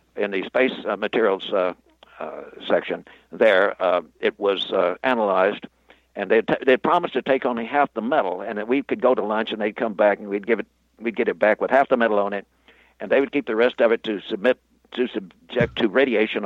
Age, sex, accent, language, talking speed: 60-79, male, American, English, 235 wpm